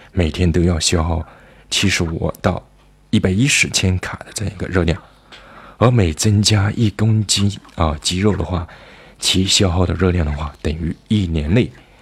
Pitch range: 80-95 Hz